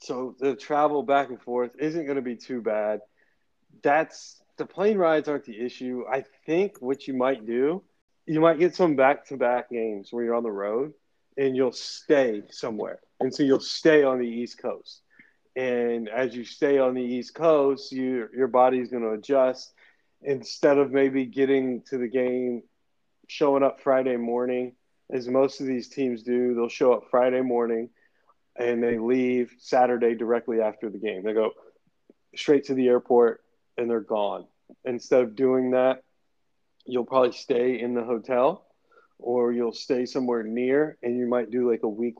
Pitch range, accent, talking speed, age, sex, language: 120-135 Hz, American, 175 wpm, 30-49, male, English